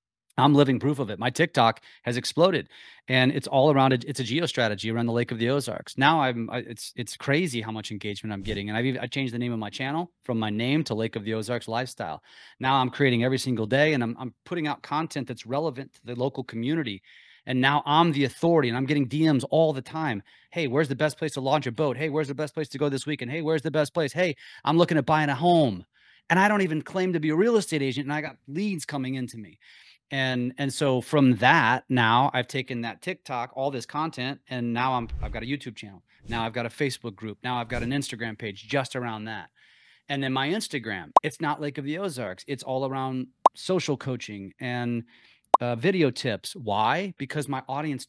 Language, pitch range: English, 120-150 Hz